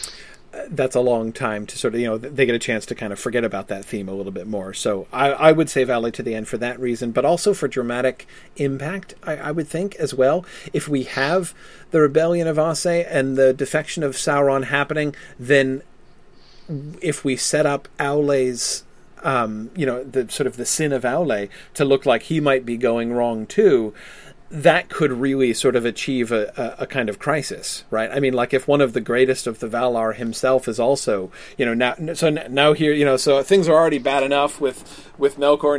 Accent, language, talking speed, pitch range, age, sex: American, English, 215 wpm, 120-150 Hz, 40-59, male